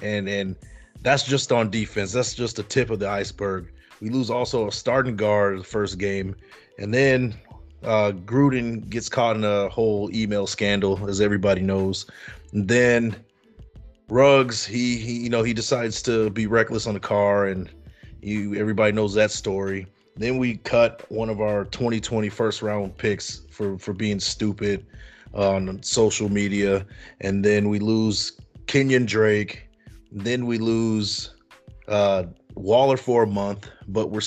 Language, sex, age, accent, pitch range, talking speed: English, male, 30-49, American, 100-120 Hz, 160 wpm